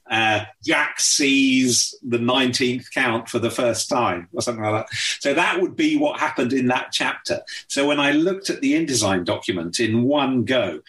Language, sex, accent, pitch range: English, male, British, 115-175 Hz